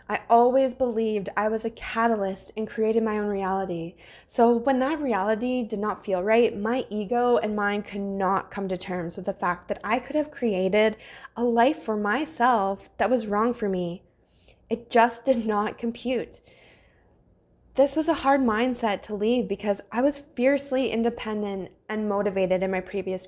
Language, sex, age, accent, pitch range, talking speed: English, female, 20-39, American, 205-255 Hz, 175 wpm